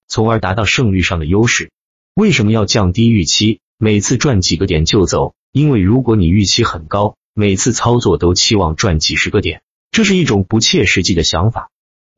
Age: 30-49